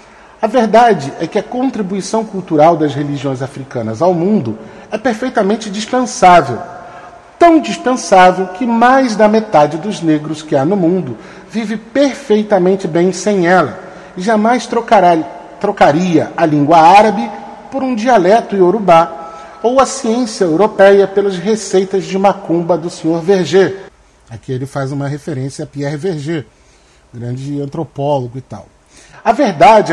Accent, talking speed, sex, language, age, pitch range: Brazilian, 135 wpm, male, Portuguese, 40-59, 155-215 Hz